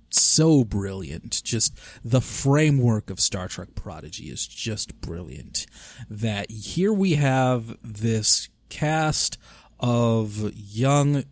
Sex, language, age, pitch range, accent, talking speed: male, English, 30-49, 95-120 Hz, American, 105 wpm